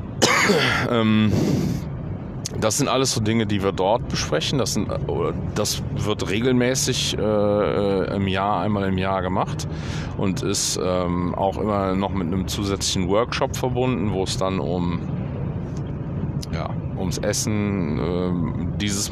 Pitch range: 95-125 Hz